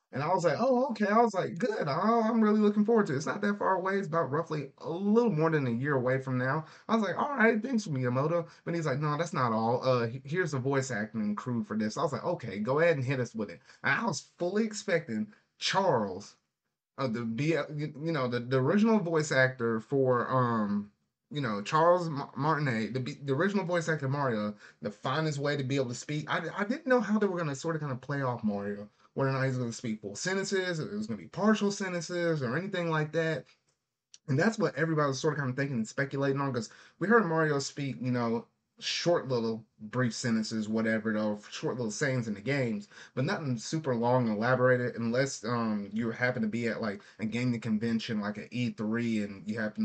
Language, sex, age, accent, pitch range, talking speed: English, male, 30-49, American, 115-165 Hz, 230 wpm